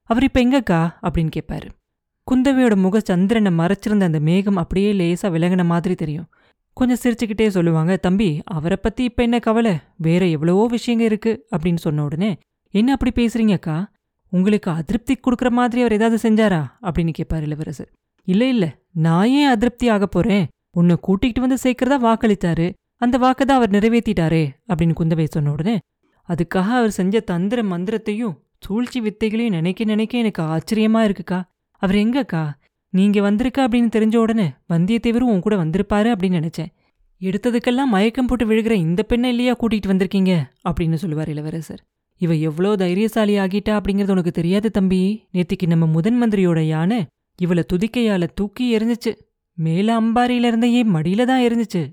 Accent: native